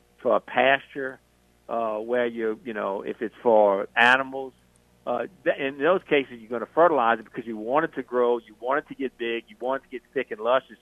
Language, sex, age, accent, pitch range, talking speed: English, male, 50-69, American, 110-135 Hz, 225 wpm